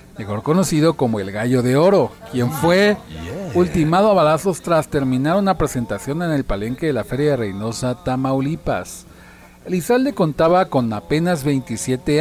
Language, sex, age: Spanish, male, 40-59